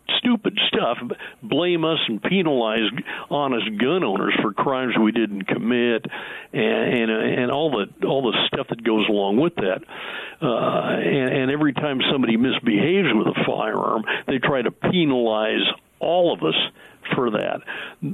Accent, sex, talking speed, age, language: American, male, 155 wpm, 60-79, English